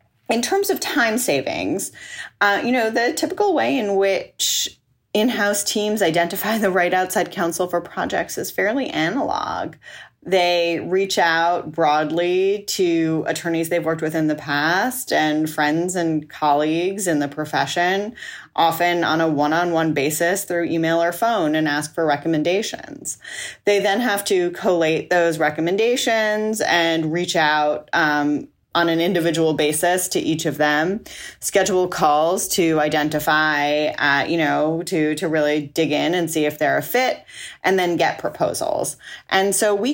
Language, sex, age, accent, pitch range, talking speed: English, female, 30-49, American, 155-195 Hz, 150 wpm